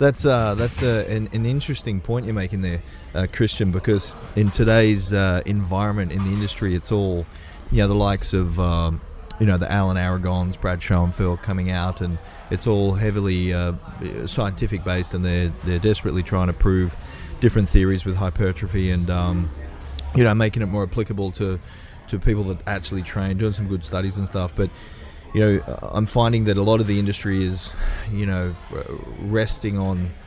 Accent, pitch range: Australian, 90-100 Hz